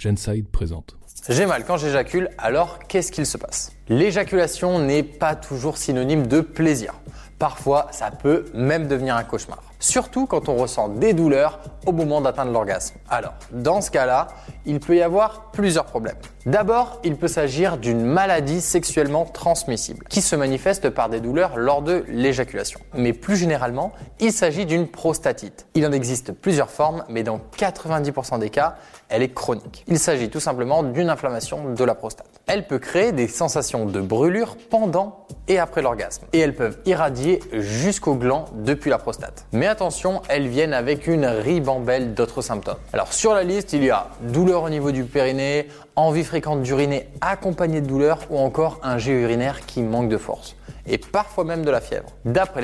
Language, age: French, 20-39